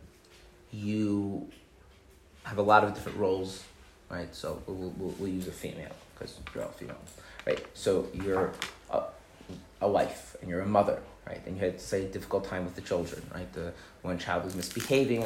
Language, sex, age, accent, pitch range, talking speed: English, male, 30-49, American, 90-110 Hz, 185 wpm